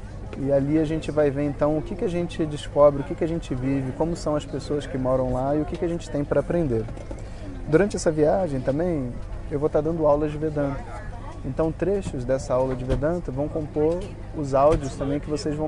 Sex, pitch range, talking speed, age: male, 120-150 Hz, 230 wpm, 30-49